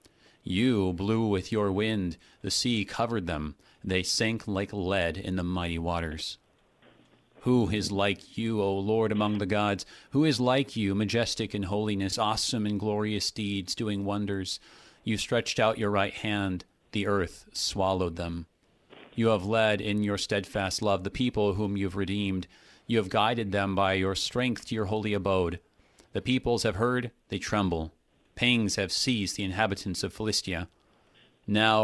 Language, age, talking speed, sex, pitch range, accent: English, 40-59, 165 wpm, male, 95-110 Hz, American